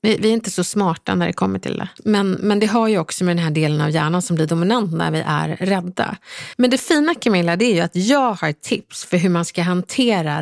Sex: female